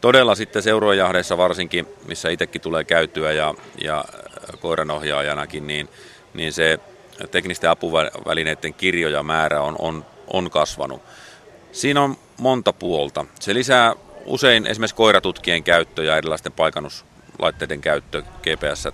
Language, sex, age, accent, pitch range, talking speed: Finnish, male, 30-49, native, 80-105 Hz, 115 wpm